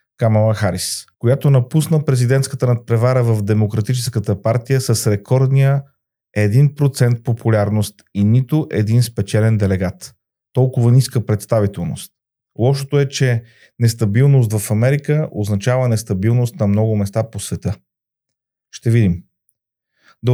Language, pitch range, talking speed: Bulgarian, 110-140 Hz, 110 wpm